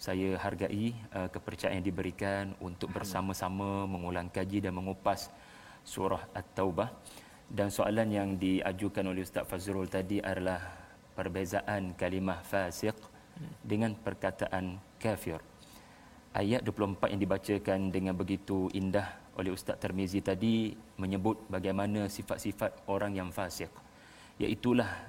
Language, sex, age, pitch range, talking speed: Malayalam, male, 30-49, 95-110 Hz, 110 wpm